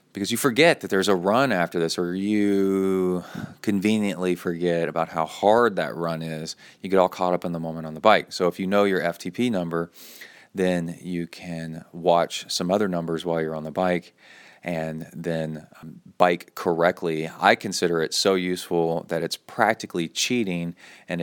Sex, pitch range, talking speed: male, 85-95 Hz, 180 wpm